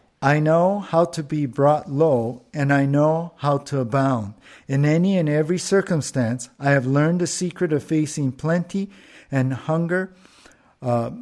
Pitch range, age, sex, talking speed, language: 130-175 Hz, 50-69, male, 155 wpm, English